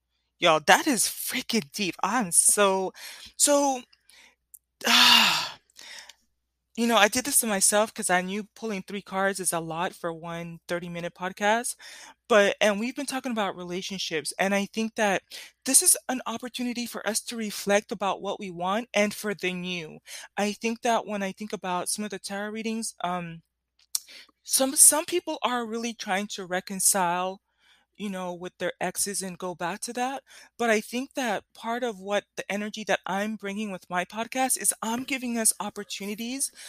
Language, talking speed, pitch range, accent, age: English, 175 wpm, 185-230 Hz, American, 20-39